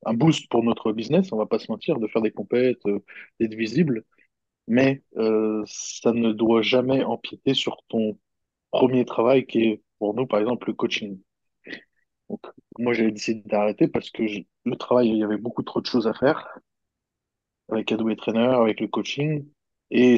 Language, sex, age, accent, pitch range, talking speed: French, male, 20-39, French, 110-130 Hz, 180 wpm